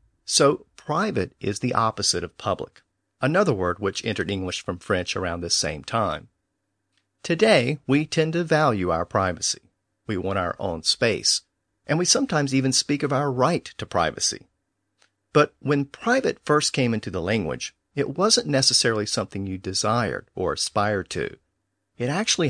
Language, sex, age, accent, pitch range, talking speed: English, male, 50-69, American, 100-145 Hz, 155 wpm